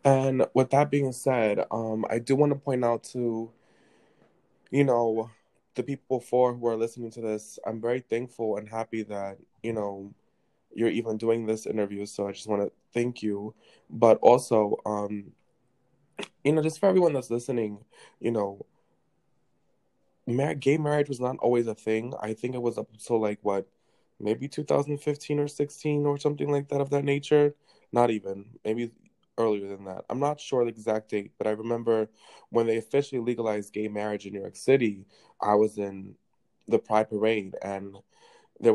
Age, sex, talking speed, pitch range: 20-39, male, 175 wpm, 105-125 Hz